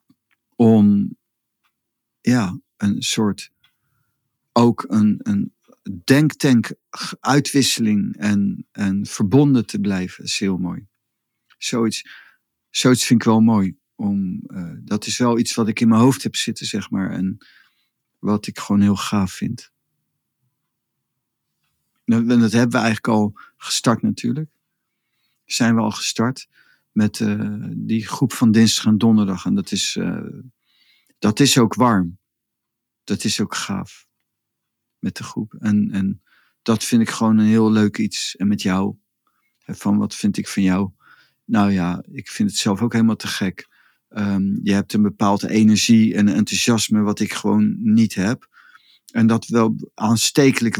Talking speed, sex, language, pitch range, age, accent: 145 wpm, male, Dutch, 100-125 Hz, 50-69, Dutch